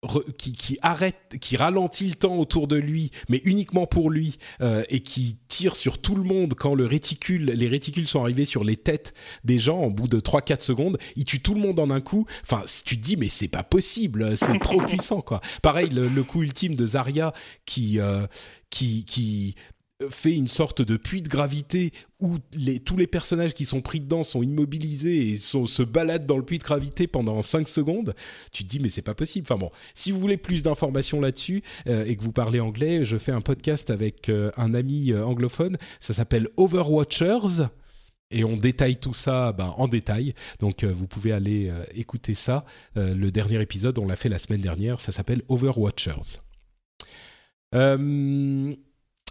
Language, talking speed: French, 200 wpm